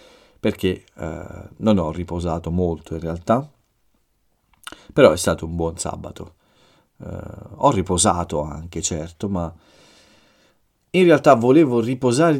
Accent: native